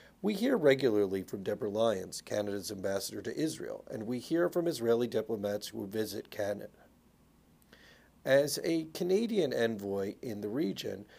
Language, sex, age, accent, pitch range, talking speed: English, male, 40-59, American, 105-155 Hz, 140 wpm